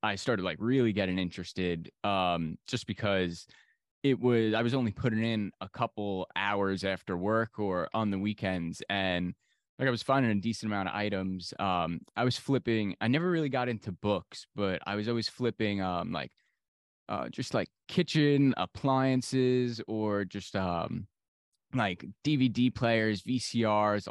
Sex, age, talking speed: male, 20-39, 160 wpm